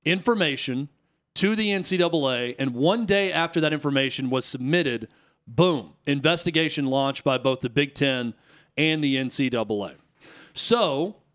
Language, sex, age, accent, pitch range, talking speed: English, male, 40-59, American, 135-175 Hz, 125 wpm